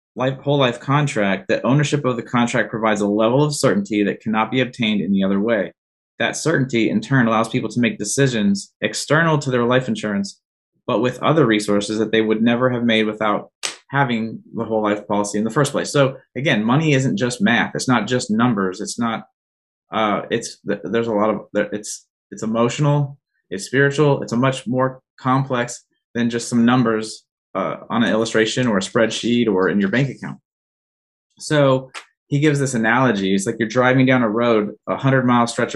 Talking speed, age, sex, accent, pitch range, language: 195 wpm, 20-39, male, American, 110-130 Hz, English